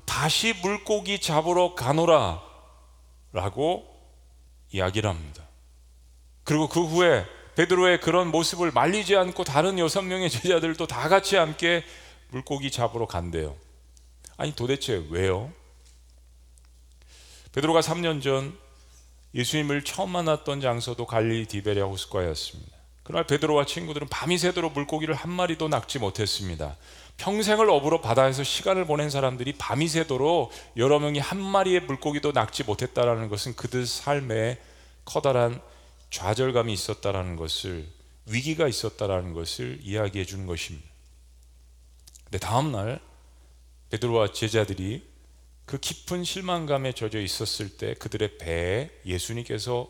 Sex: male